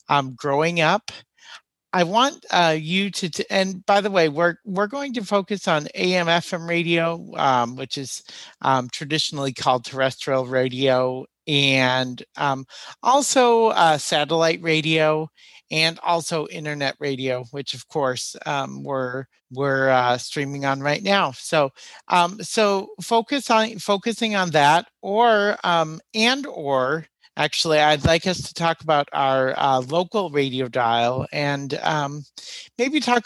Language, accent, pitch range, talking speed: English, American, 135-180 Hz, 140 wpm